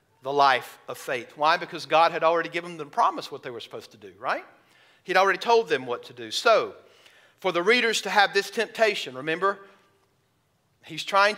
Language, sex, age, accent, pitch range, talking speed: English, male, 50-69, American, 155-210 Hz, 205 wpm